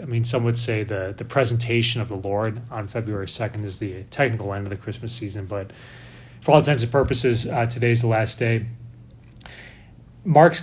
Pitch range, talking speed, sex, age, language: 115-130 Hz, 190 wpm, male, 30-49, English